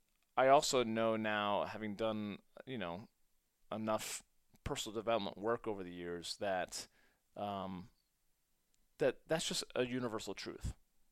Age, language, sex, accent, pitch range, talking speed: 30-49, English, male, American, 105-140 Hz, 125 wpm